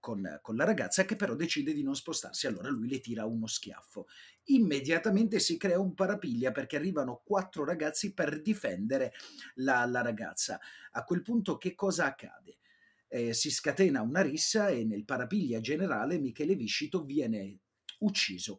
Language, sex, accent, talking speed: Italian, male, native, 155 wpm